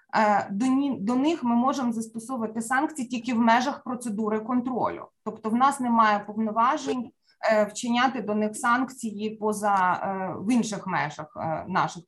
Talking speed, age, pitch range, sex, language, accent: 125 wpm, 20-39, 210-255 Hz, female, Ukrainian, native